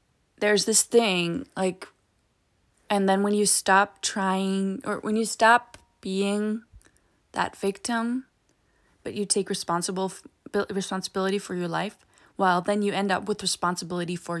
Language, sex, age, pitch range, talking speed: English, female, 20-39, 175-205 Hz, 135 wpm